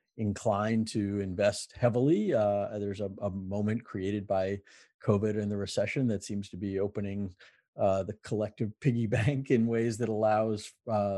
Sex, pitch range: male, 100-115 Hz